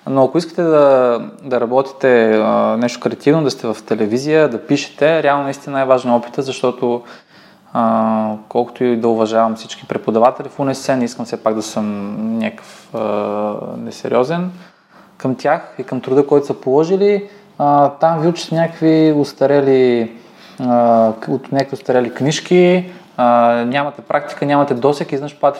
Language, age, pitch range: Bulgarian, 20-39, 115-145 Hz